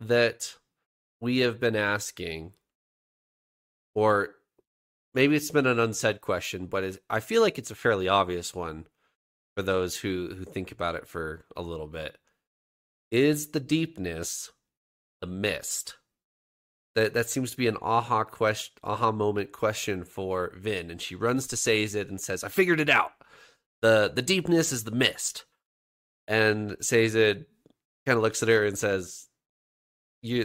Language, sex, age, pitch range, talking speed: English, male, 30-49, 95-120 Hz, 155 wpm